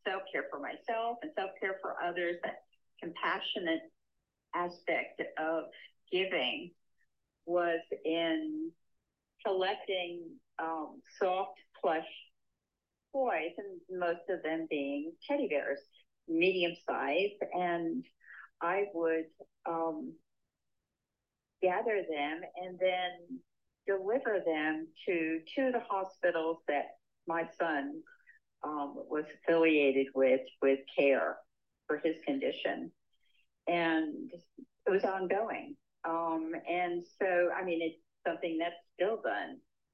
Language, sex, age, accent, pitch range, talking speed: English, female, 50-69, American, 160-210 Hz, 105 wpm